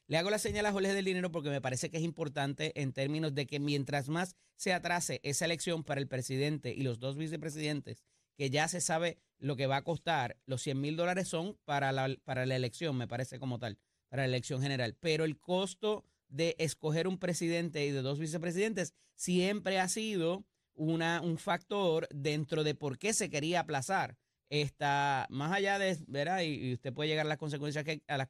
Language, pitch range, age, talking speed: Spanish, 135-170 Hz, 30-49, 205 wpm